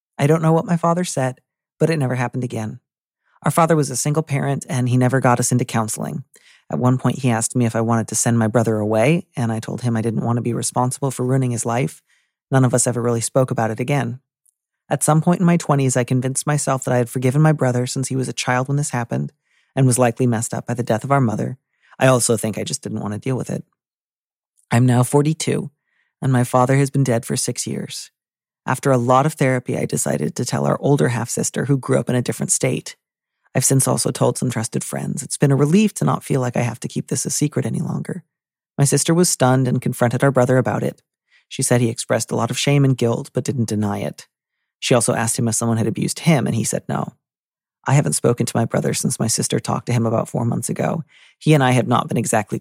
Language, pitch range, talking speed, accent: English, 120-145 Hz, 255 wpm, American